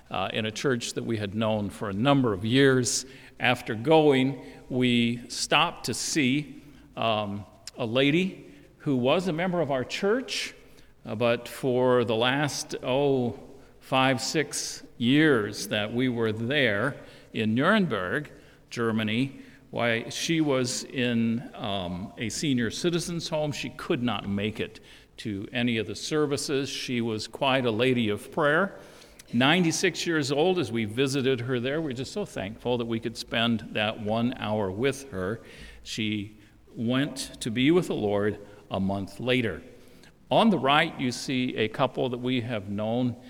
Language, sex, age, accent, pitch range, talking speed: English, male, 50-69, American, 110-140 Hz, 155 wpm